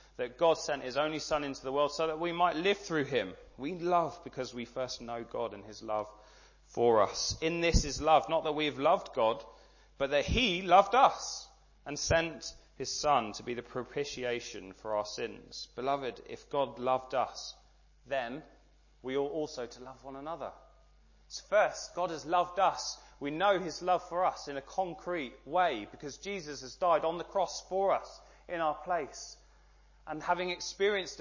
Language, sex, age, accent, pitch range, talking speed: English, male, 20-39, British, 130-175 Hz, 190 wpm